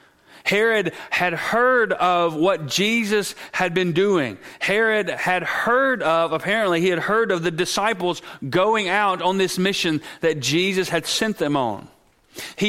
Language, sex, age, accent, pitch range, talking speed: English, male, 40-59, American, 165-200 Hz, 150 wpm